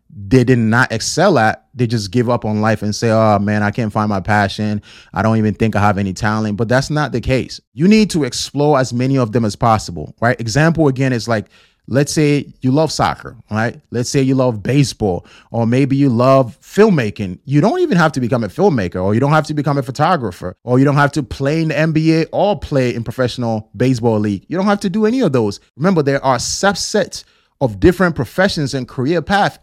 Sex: male